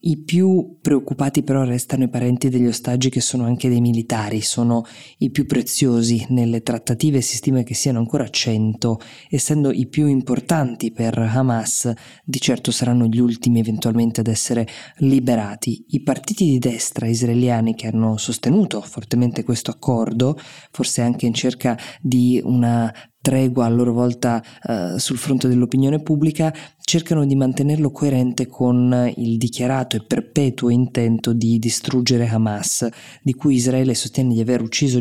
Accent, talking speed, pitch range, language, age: native, 150 wpm, 115-135 Hz, Italian, 20-39